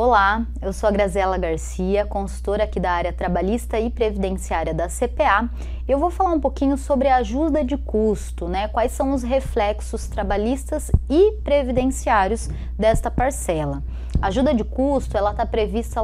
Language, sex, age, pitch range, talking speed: Portuguese, female, 20-39, 200-280 Hz, 155 wpm